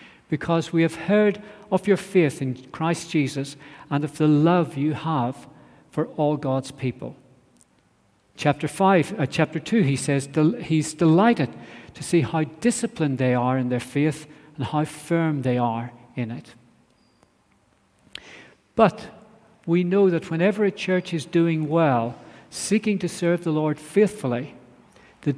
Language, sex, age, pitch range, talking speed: English, male, 50-69, 140-180 Hz, 150 wpm